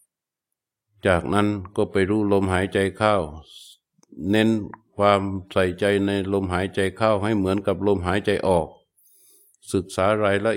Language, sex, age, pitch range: Thai, male, 60-79, 95-105 Hz